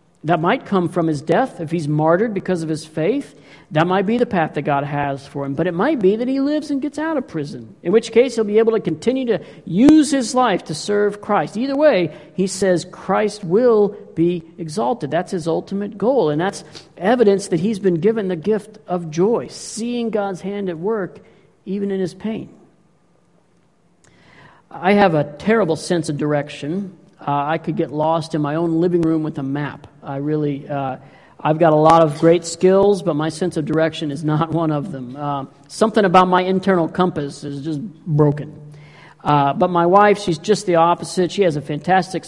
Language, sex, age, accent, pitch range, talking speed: English, male, 50-69, American, 155-195 Hz, 200 wpm